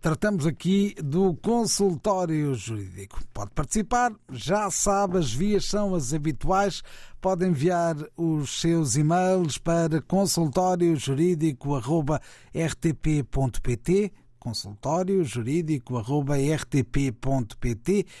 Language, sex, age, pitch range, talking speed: Portuguese, male, 50-69, 135-190 Hz, 75 wpm